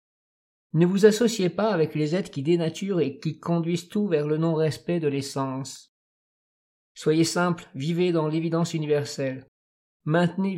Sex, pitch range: male, 145-175 Hz